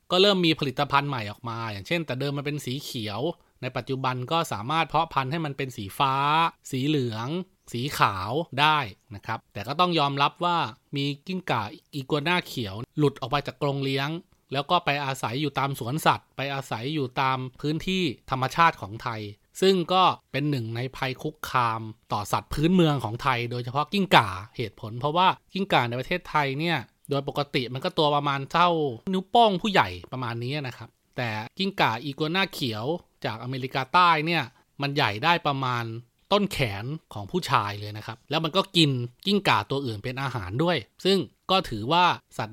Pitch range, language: 120-160 Hz, Thai